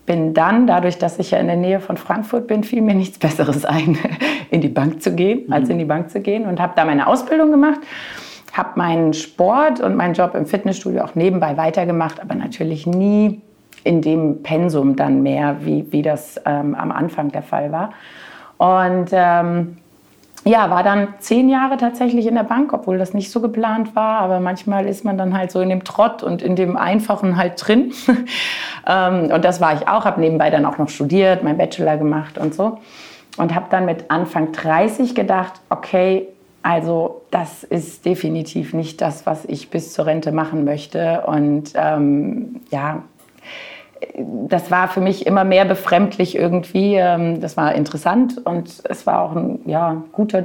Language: German